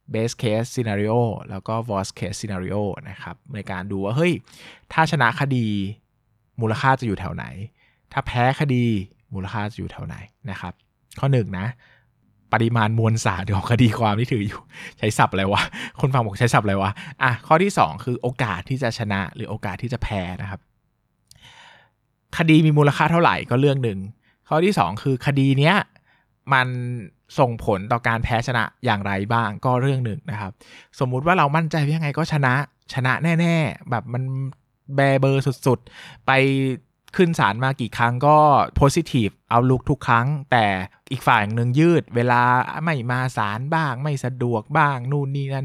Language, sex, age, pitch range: Thai, male, 20-39, 110-140 Hz